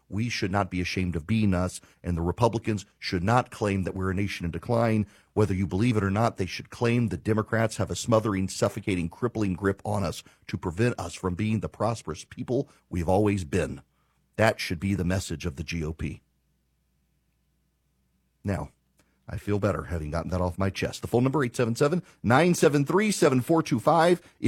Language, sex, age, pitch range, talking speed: English, male, 40-59, 100-150 Hz, 175 wpm